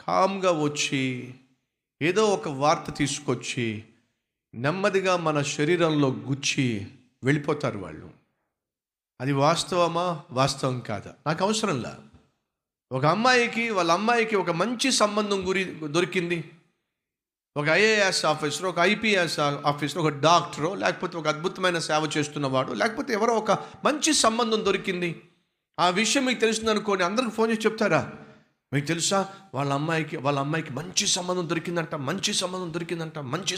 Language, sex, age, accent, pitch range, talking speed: Telugu, male, 50-69, native, 145-190 Hz, 90 wpm